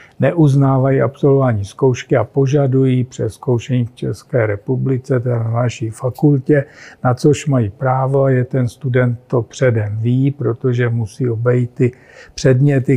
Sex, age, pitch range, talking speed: male, 50-69, 120-135 Hz, 130 wpm